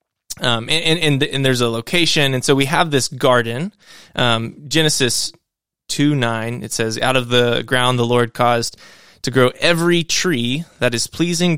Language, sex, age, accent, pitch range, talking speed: English, male, 20-39, American, 115-135 Hz, 170 wpm